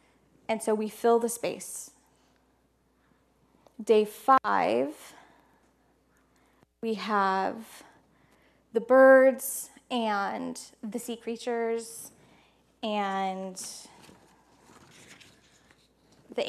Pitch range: 200-265 Hz